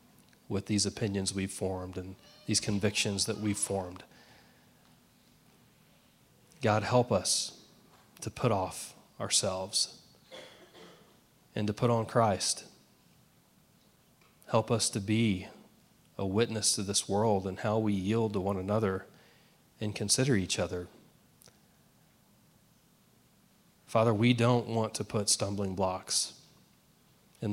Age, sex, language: 30-49, male, English